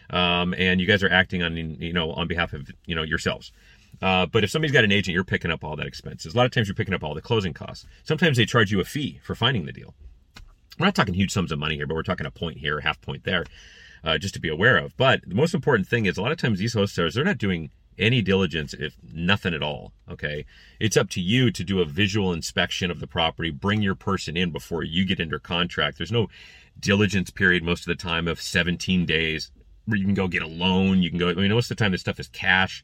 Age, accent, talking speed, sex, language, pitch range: 40-59, American, 265 wpm, male, English, 80-100 Hz